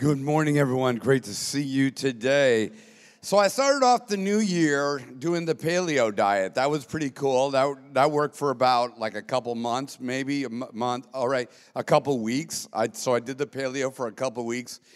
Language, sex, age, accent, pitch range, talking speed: English, male, 50-69, American, 130-165 Hz, 205 wpm